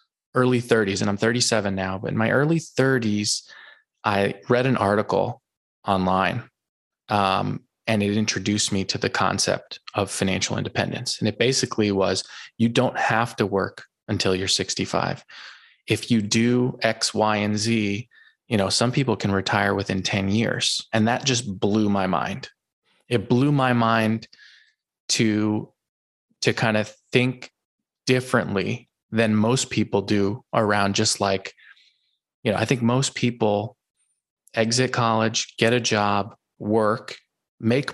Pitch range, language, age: 105-125 Hz, English, 20-39